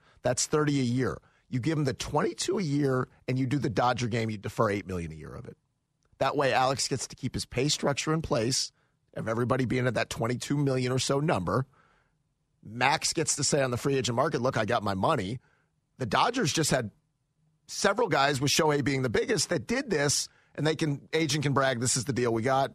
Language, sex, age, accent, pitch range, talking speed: English, male, 40-59, American, 115-150 Hz, 225 wpm